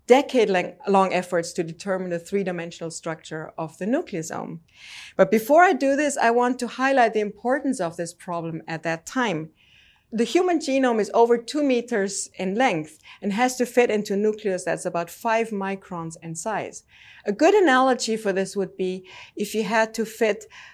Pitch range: 185-240 Hz